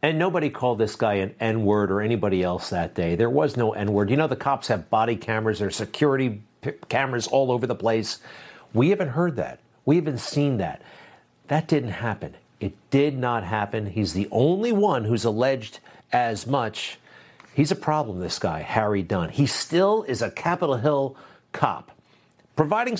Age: 50-69